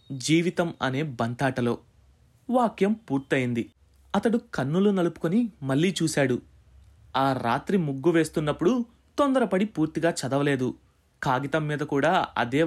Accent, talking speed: native, 100 wpm